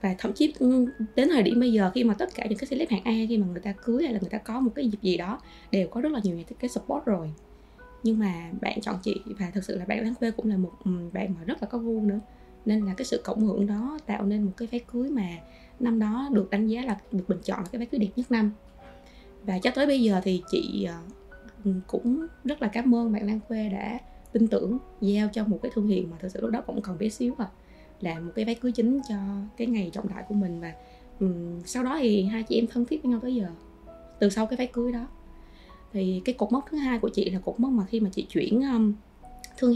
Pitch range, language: 195-235 Hz, Vietnamese